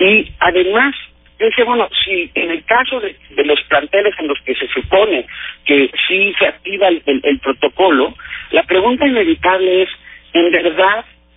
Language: Spanish